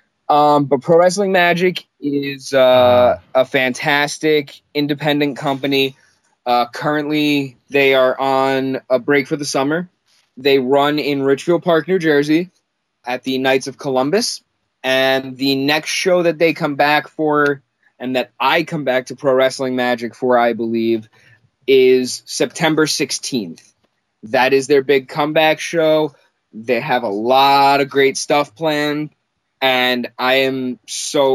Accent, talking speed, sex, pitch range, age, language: American, 145 wpm, male, 130-150 Hz, 20-39, English